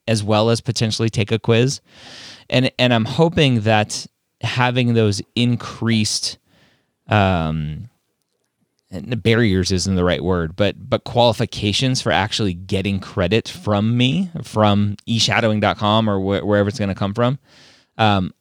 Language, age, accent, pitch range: English, 20-39, American, 95-115 Hz